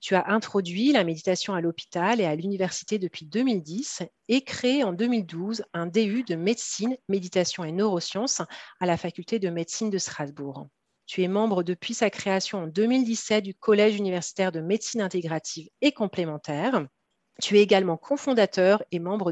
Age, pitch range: 40-59, 185-230 Hz